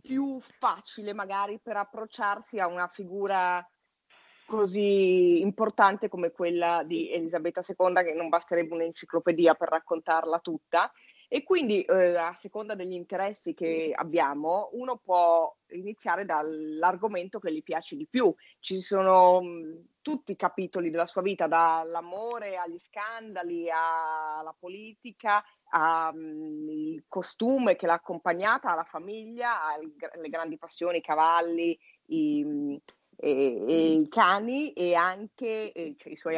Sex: female